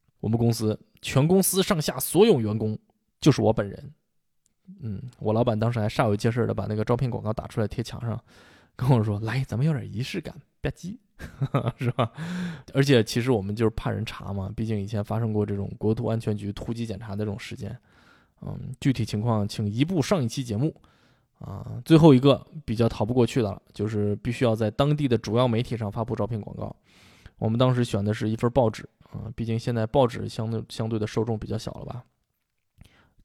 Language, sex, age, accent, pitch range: Chinese, male, 20-39, native, 105-135 Hz